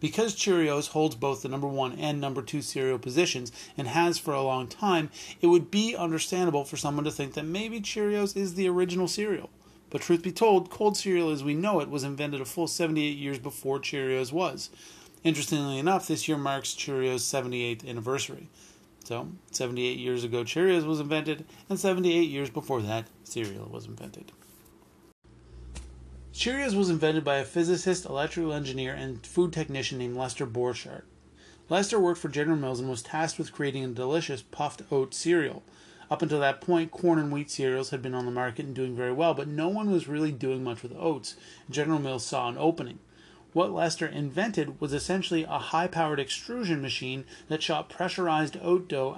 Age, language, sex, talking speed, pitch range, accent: 30-49, English, male, 180 wpm, 130-170 Hz, American